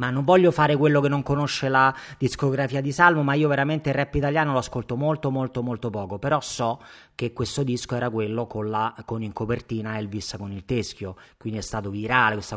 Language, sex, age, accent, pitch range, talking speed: Italian, male, 30-49, native, 110-150 Hz, 215 wpm